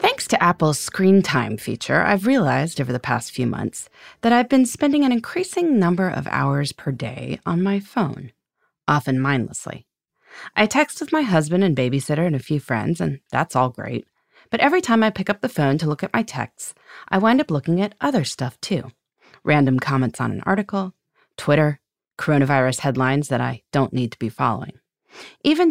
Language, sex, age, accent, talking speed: English, female, 30-49, American, 190 wpm